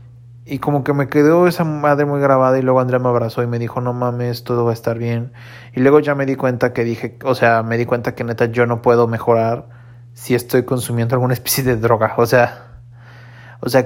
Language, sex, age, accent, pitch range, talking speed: English, male, 30-49, Mexican, 115-125 Hz, 235 wpm